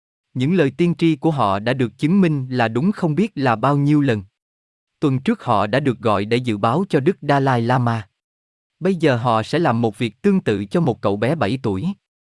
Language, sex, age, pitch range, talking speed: Vietnamese, male, 20-39, 110-155 Hz, 230 wpm